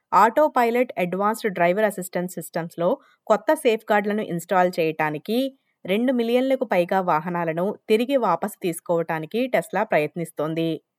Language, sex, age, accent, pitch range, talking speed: Telugu, female, 20-39, native, 175-235 Hz, 110 wpm